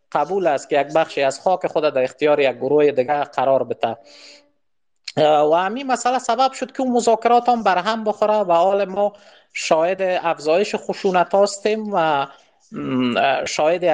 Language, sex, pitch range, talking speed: Persian, male, 165-230 Hz, 150 wpm